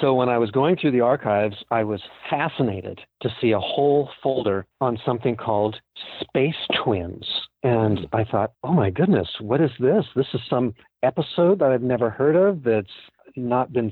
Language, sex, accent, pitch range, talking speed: English, male, American, 110-135 Hz, 180 wpm